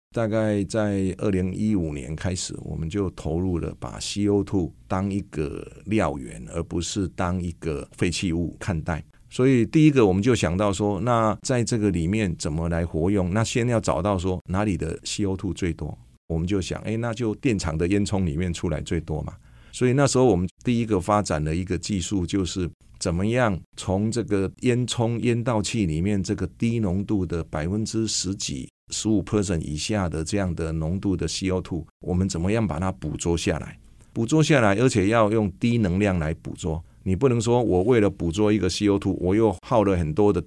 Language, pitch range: Chinese, 85-110 Hz